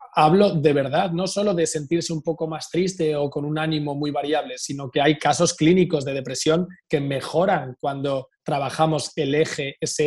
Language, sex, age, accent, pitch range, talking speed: Spanish, male, 20-39, Spanish, 145-165 Hz, 185 wpm